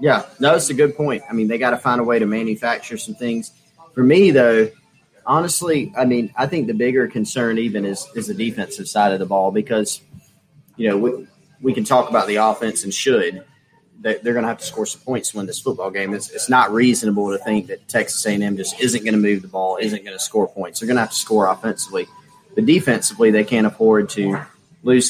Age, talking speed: 30-49, 235 wpm